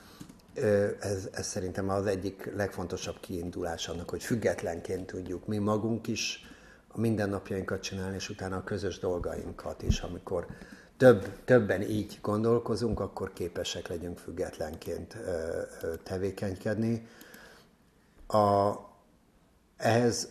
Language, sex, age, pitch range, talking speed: Hungarian, male, 60-79, 95-105 Hz, 100 wpm